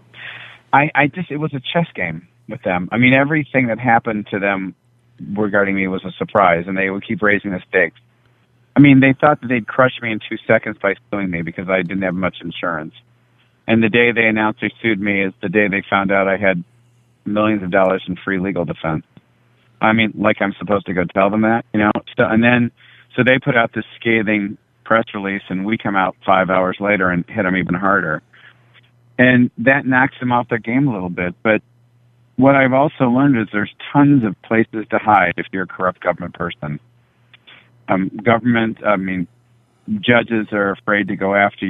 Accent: American